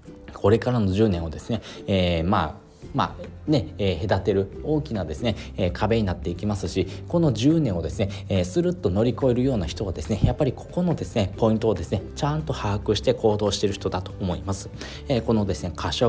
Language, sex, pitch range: Japanese, male, 95-135 Hz